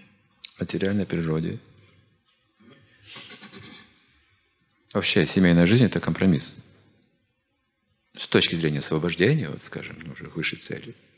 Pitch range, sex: 80-120 Hz, male